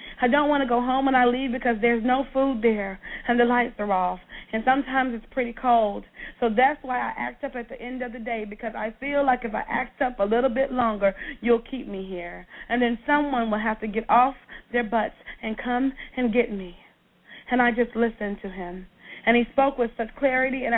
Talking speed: 230 wpm